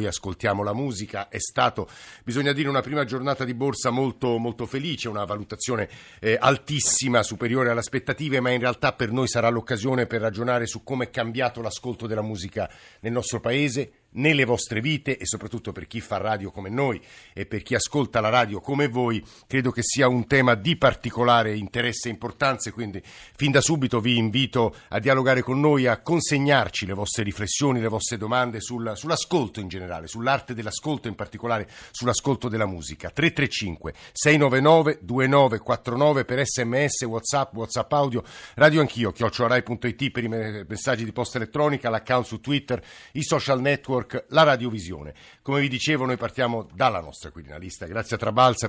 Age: 50-69